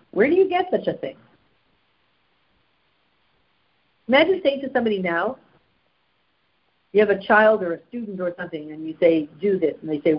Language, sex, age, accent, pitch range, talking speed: English, female, 50-69, American, 160-235 Hz, 195 wpm